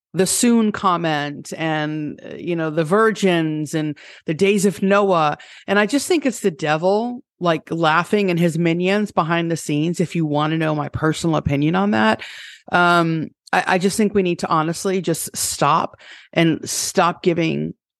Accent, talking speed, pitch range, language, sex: American, 175 wpm, 155-195 Hz, English, female